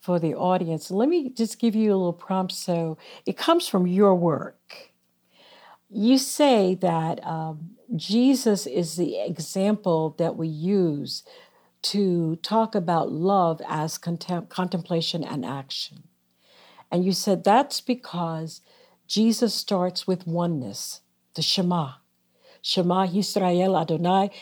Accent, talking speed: American, 125 wpm